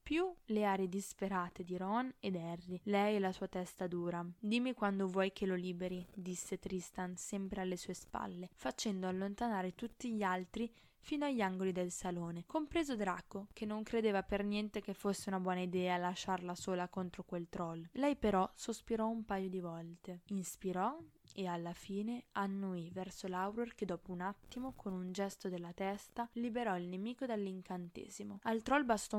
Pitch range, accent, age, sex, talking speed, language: 185-225 Hz, native, 20-39, female, 170 wpm, Italian